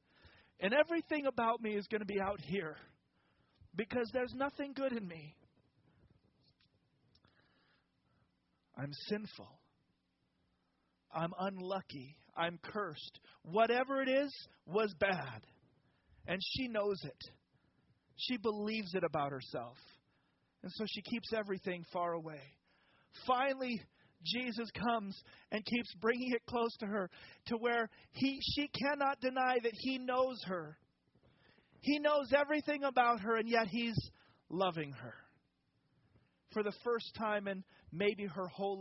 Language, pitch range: English, 155-240 Hz